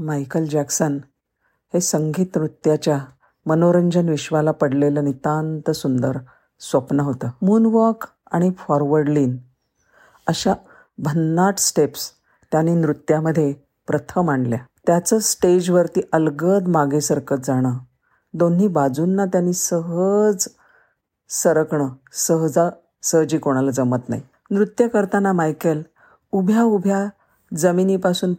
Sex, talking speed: female, 95 wpm